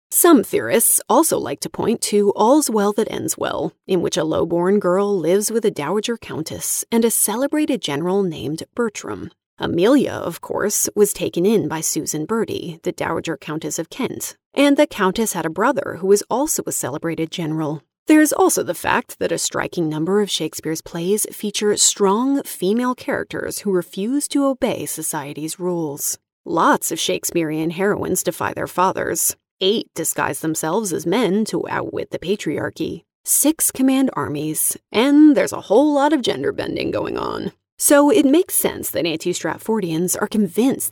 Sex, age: female, 30-49